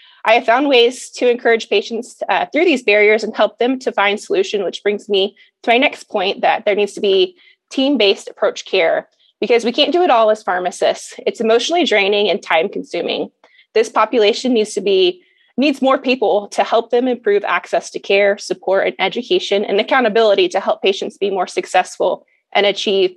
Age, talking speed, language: 20-39, 190 wpm, English